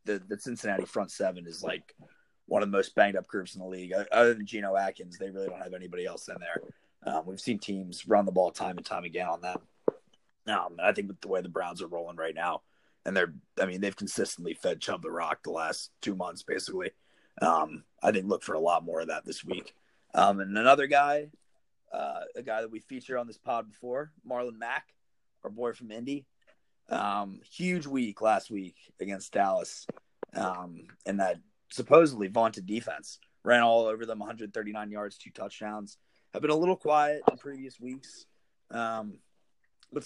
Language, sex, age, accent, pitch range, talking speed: English, male, 30-49, American, 95-120 Hz, 200 wpm